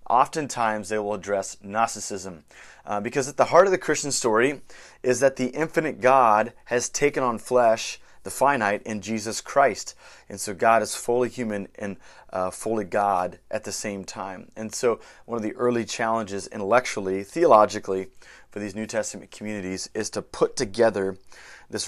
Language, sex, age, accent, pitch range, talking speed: English, male, 30-49, American, 100-125 Hz, 165 wpm